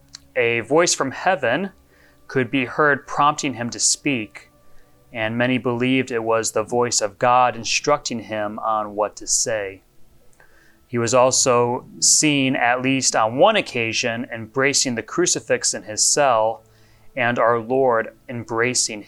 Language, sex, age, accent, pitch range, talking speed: English, male, 30-49, American, 110-140 Hz, 140 wpm